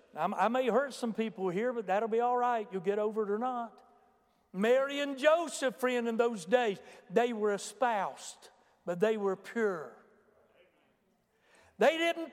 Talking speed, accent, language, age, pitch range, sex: 160 wpm, American, English, 60-79, 200-310 Hz, male